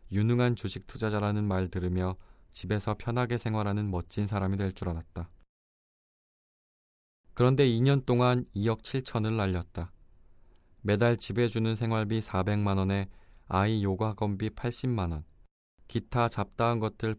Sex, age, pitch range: male, 20-39, 95-115 Hz